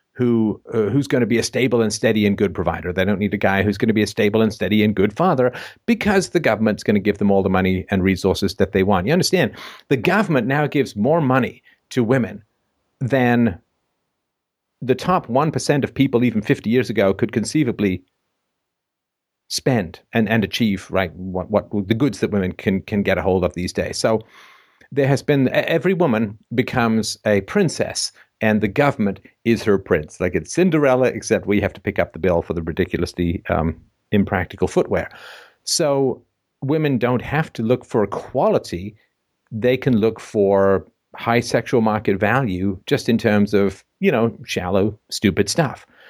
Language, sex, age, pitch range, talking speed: English, male, 50-69, 100-125 Hz, 185 wpm